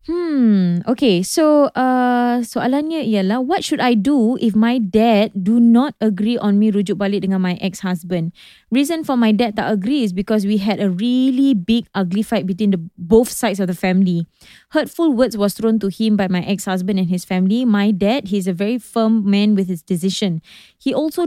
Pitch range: 195-235 Hz